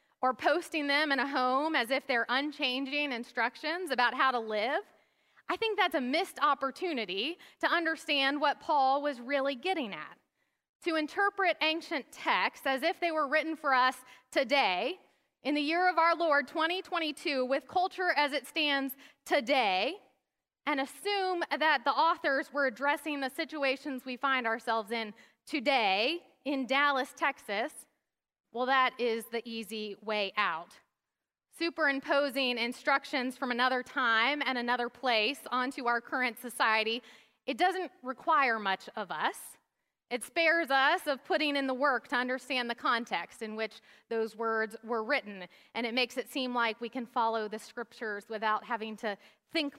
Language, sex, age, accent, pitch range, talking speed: English, female, 30-49, American, 235-300 Hz, 155 wpm